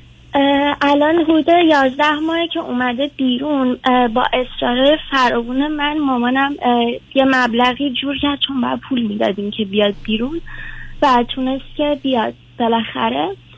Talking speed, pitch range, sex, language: 125 wpm, 235-290 Hz, female, Persian